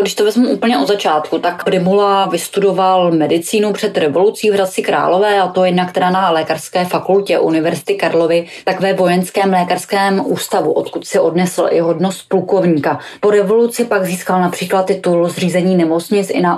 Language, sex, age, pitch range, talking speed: Czech, female, 20-39, 170-195 Hz, 165 wpm